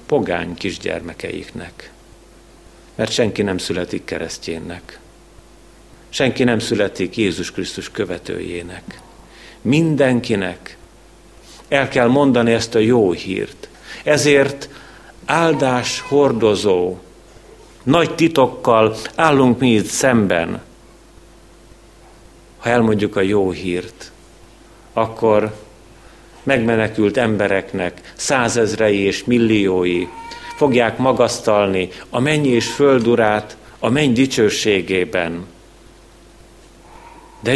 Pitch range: 90-125 Hz